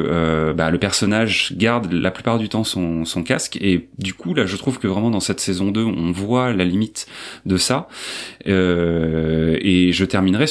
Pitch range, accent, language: 95-120 Hz, French, French